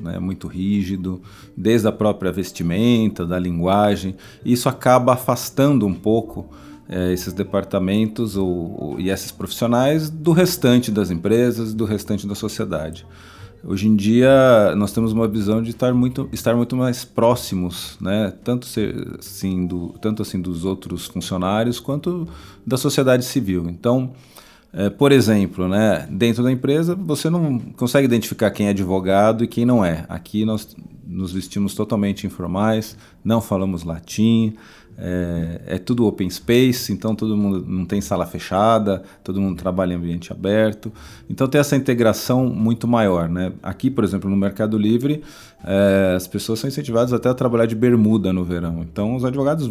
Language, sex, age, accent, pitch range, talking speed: Portuguese, male, 40-59, Brazilian, 95-120 Hz, 160 wpm